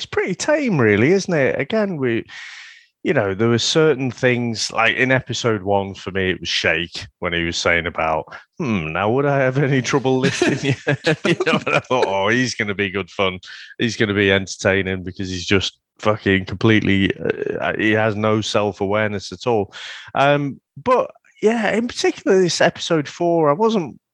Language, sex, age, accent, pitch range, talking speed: English, male, 30-49, British, 95-140 Hz, 190 wpm